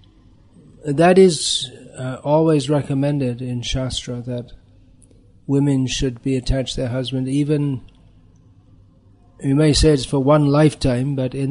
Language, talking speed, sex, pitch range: English, 130 wpm, male, 115-145 Hz